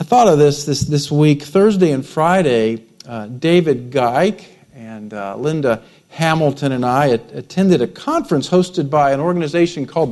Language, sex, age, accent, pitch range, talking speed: English, male, 50-69, American, 155-210 Hz, 160 wpm